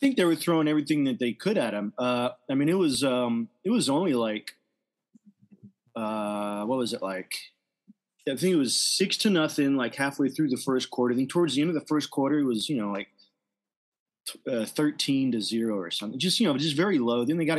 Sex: male